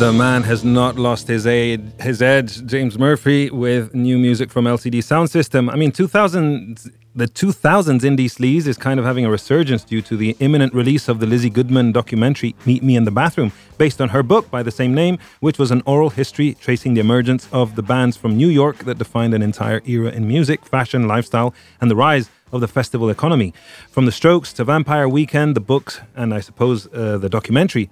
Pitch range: 110-140 Hz